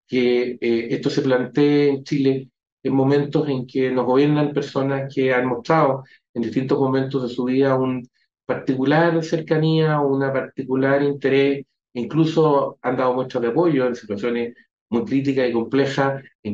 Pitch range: 120-140 Hz